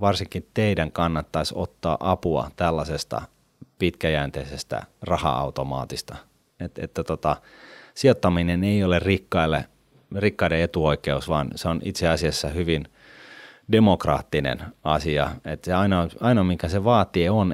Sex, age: male, 30-49